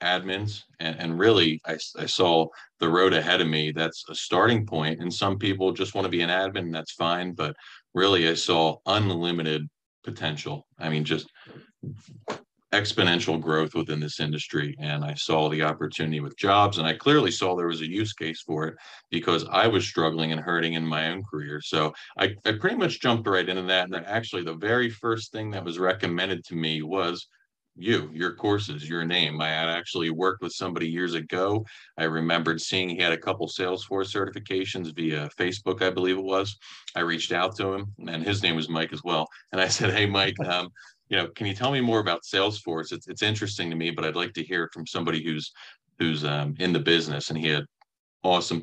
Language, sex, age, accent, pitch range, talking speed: English, male, 40-59, American, 80-95 Hz, 205 wpm